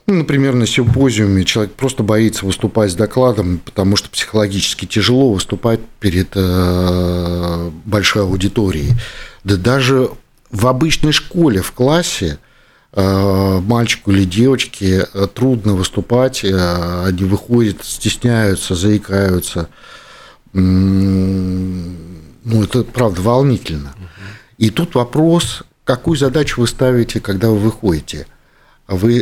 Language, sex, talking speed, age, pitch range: Russian, male, 100 wpm, 50-69, 95-120 Hz